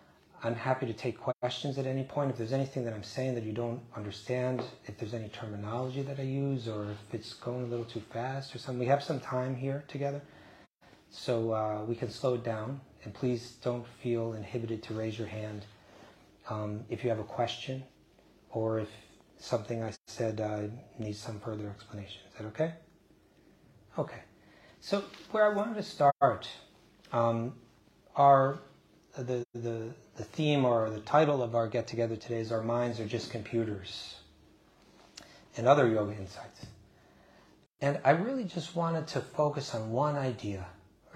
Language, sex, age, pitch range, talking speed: English, male, 30-49, 110-135 Hz, 170 wpm